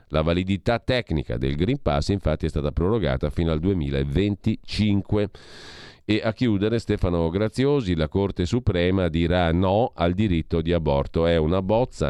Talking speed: 150 wpm